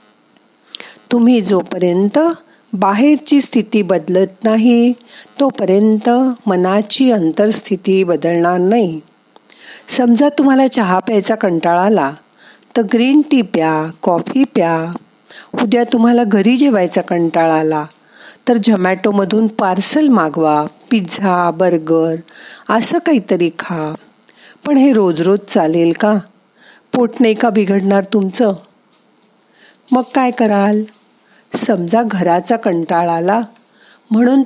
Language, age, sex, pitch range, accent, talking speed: Marathi, 50-69, female, 185-240 Hz, native, 95 wpm